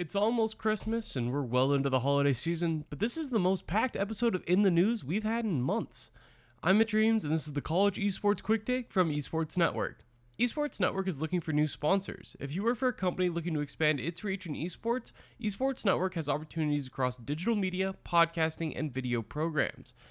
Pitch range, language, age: 145-195 Hz, English, 20-39